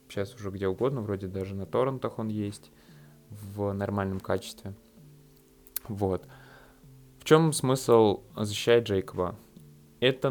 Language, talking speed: Russian, 115 wpm